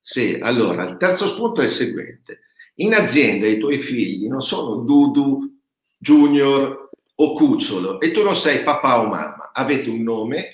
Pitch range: 120-170 Hz